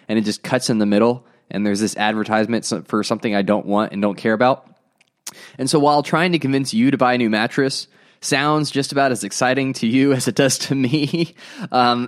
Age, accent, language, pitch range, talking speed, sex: 20-39, American, English, 115-145 Hz, 225 wpm, male